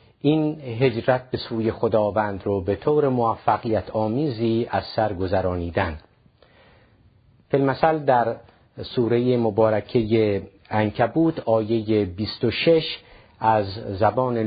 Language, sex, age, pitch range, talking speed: Persian, male, 50-69, 100-120 Hz, 90 wpm